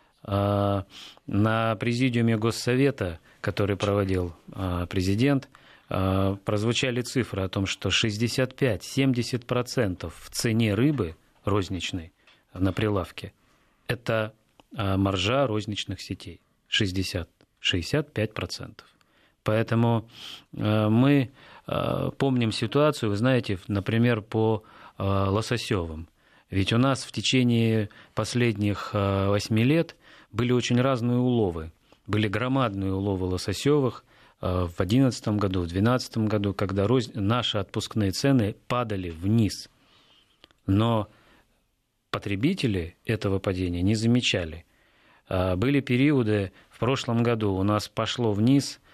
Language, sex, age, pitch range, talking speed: Russian, male, 30-49, 95-120 Hz, 95 wpm